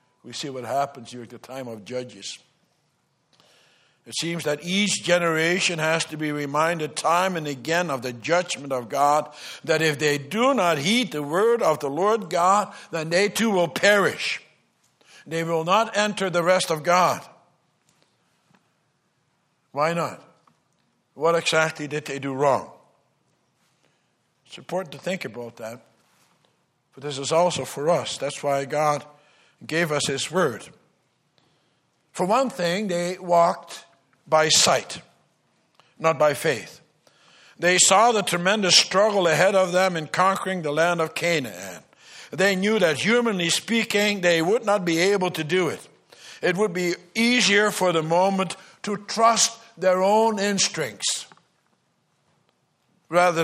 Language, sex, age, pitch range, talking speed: English, male, 60-79, 150-190 Hz, 145 wpm